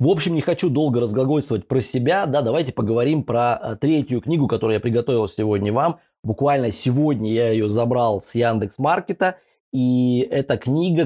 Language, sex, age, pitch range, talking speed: Russian, male, 20-39, 115-145 Hz, 165 wpm